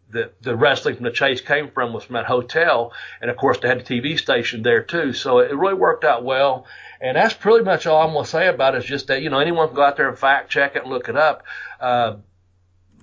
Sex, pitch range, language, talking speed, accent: male, 120-155 Hz, English, 265 wpm, American